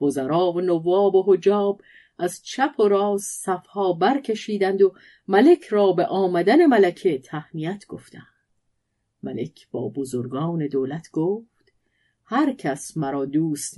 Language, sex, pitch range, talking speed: Persian, female, 150-210 Hz, 120 wpm